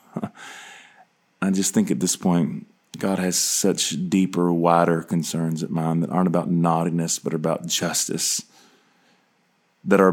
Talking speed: 140 wpm